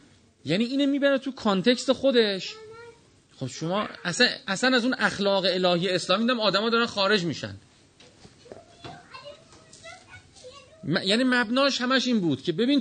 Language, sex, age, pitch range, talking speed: Persian, male, 40-59, 155-220 Hz, 130 wpm